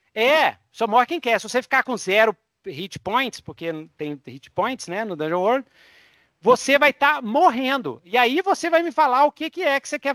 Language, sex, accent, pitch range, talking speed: Portuguese, male, Brazilian, 180-260 Hz, 220 wpm